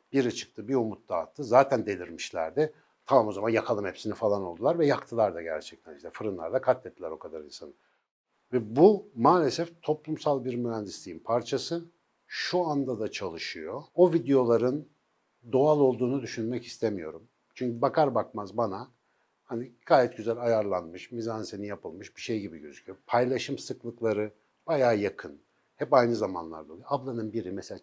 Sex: male